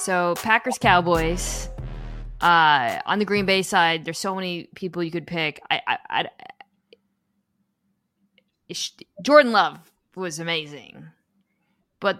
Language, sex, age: English, female, 20-39